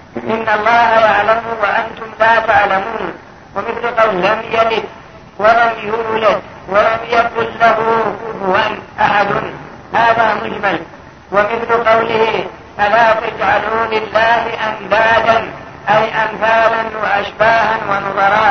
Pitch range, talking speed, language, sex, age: 200-220 Hz, 95 wpm, Arabic, female, 50-69